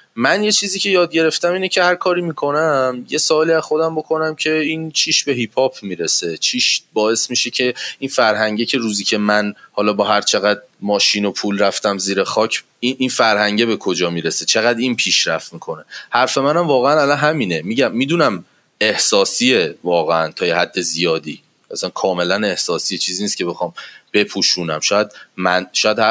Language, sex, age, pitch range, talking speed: Persian, male, 30-49, 105-150 Hz, 175 wpm